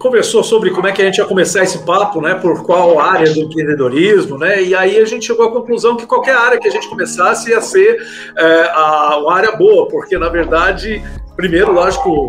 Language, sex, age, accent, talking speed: Portuguese, male, 50-69, Brazilian, 215 wpm